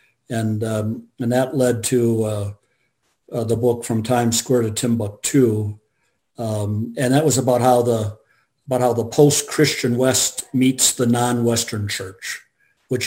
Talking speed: 145 wpm